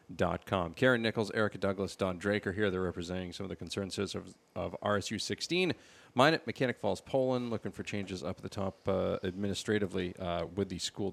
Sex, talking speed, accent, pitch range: male, 200 wpm, American, 95-120 Hz